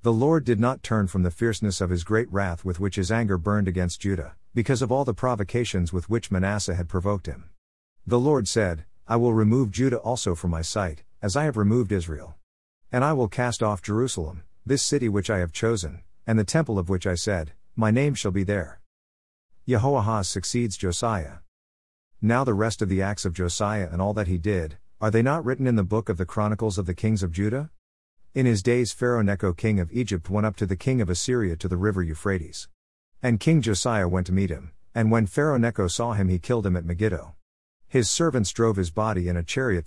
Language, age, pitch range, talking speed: English, 50-69, 90-115 Hz, 220 wpm